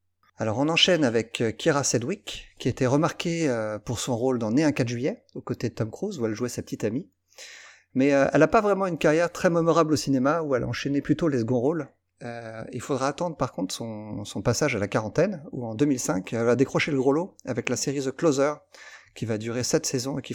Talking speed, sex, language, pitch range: 230 wpm, male, French, 110-150 Hz